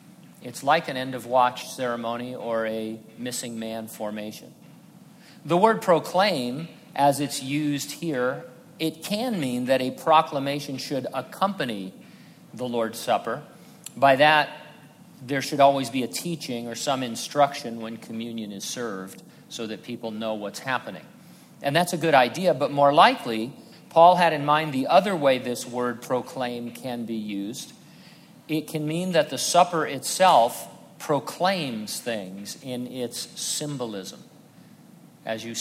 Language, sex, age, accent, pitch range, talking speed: English, male, 50-69, American, 120-160 Hz, 140 wpm